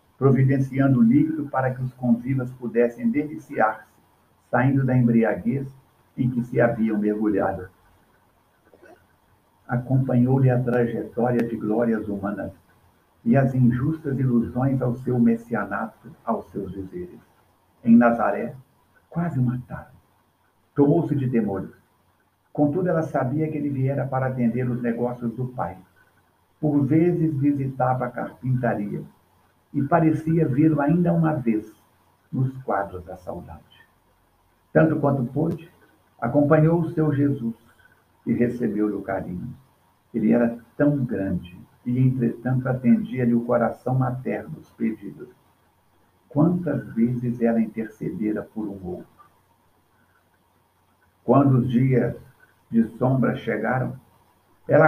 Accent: Brazilian